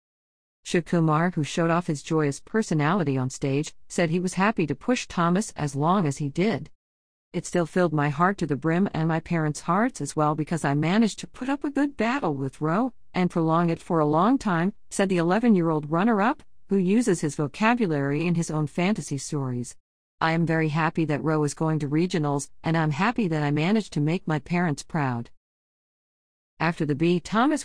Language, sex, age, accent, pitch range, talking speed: English, female, 50-69, American, 145-180 Hz, 200 wpm